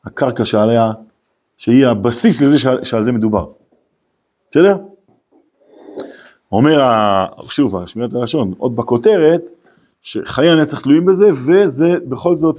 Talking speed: 105 wpm